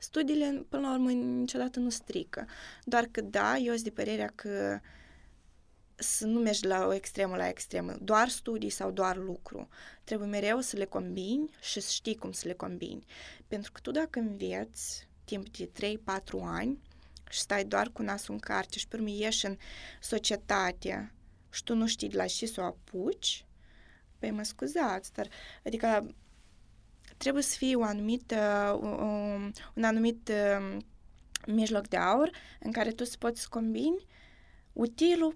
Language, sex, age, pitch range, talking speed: Romanian, female, 20-39, 195-245 Hz, 160 wpm